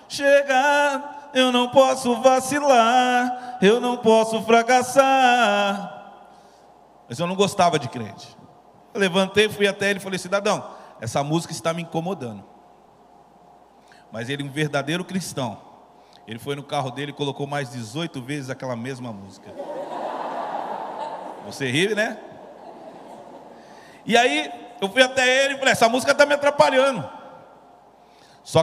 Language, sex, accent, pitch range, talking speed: Portuguese, male, Brazilian, 140-205 Hz, 130 wpm